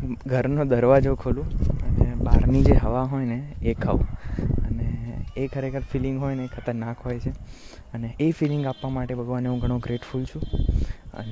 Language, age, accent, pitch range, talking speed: Gujarati, 20-39, native, 115-135 Hz, 95 wpm